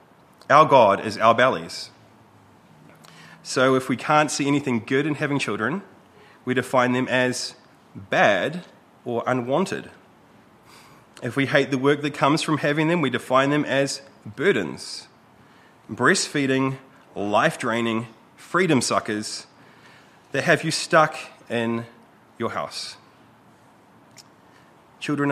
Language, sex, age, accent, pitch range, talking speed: English, male, 30-49, Australian, 125-165 Hz, 115 wpm